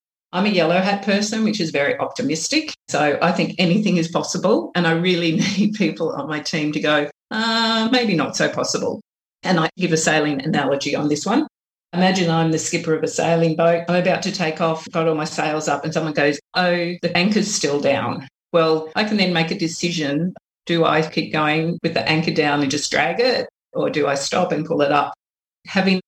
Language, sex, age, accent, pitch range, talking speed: English, female, 40-59, Australian, 150-185 Hz, 215 wpm